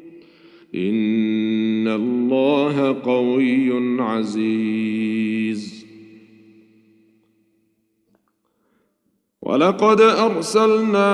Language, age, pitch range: Arabic, 50-69, 135-220 Hz